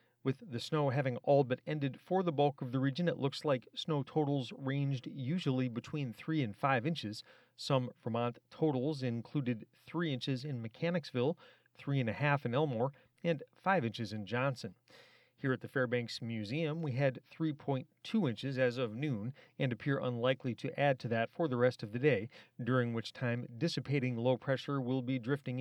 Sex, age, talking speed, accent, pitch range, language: male, 40-59, 185 wpm, American, 125-145 Hz, English